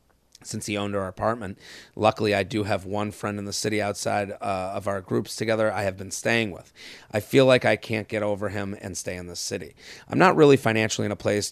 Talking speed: 235 wpm